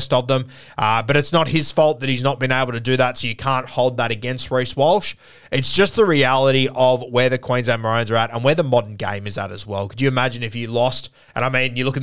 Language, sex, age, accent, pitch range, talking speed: English, male, 20-39, Australian, 110-130 Hz, 280 wpm